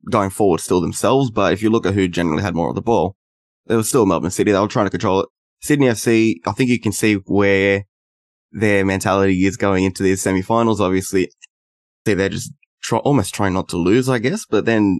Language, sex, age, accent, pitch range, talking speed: English, male, 10-29, Australian, 85-105 Hz, 225 wpm